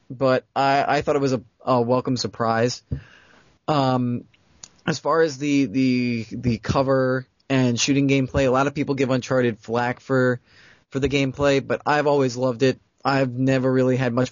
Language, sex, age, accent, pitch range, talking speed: English, male, 20-39, American, 125-145 Hz, 175 wpm